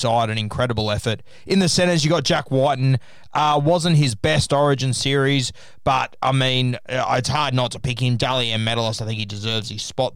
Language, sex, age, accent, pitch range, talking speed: English, male, 20-39, Australian, 120-145 Hz, 200 wpm